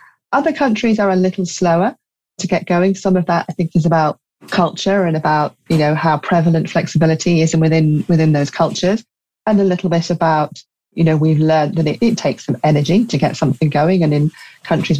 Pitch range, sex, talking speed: 155-190 Hz, female, 205 wpm